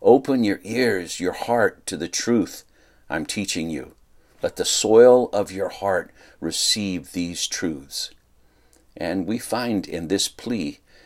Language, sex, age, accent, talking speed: English, male, 60-79, American, 140 wpm